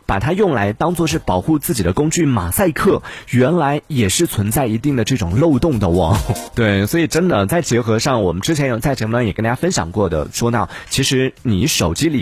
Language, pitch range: Chinese, 100-140 Hz